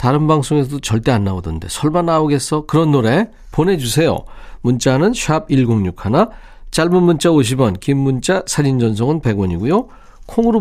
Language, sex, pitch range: Korean, male, 110-165 Hz